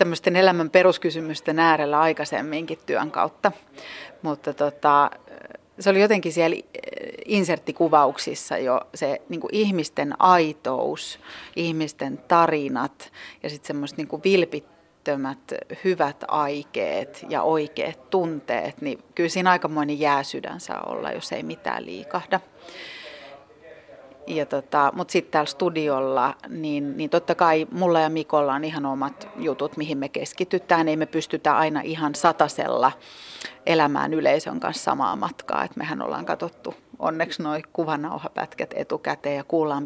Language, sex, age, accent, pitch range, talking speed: Finnish, female, 30-49, native, 150-175 Hz, 120 wpm